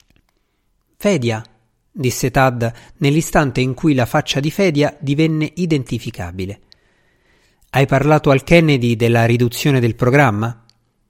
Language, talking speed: Italian, 110 wpm